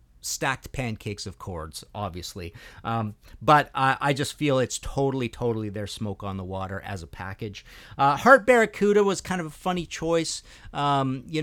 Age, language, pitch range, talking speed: 50-69, English, 105-145 Hz, 175 wpm